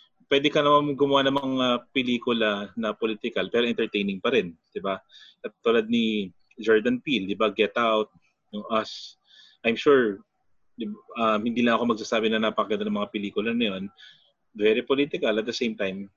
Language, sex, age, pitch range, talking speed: English, male, 20-39, 105-135 Hz, 165 wpm